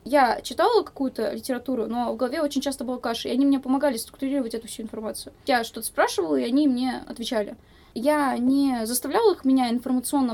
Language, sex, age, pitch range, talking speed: Russian, female, 10-29, 230-280 Hz, 185 wpm